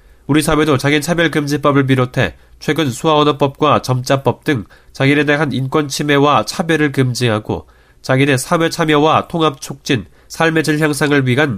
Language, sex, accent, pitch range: Korean, male, native, 115-150 Hz